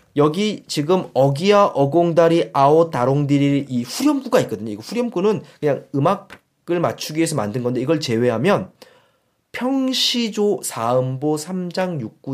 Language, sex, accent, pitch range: Korean, male, native, 130-195 Hz